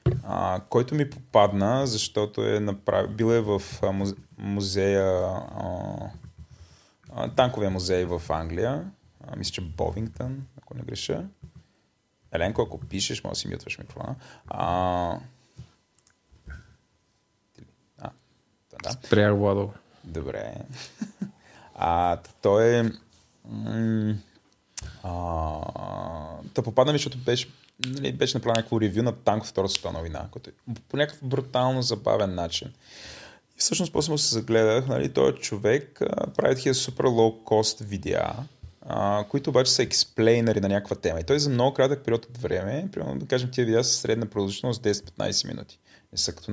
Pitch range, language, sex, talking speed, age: 100-130 Hz, Bulgarian, male, 125 wpm, 20-39